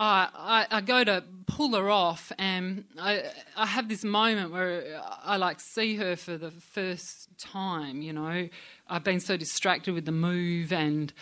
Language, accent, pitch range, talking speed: English, Australian, 165-215 Hz, 175 wpm